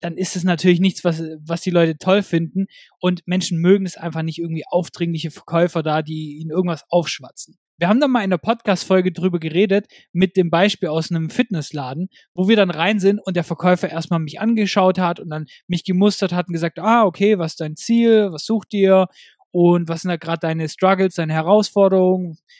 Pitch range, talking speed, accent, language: 170-210 Hz, 205 wpm, German, German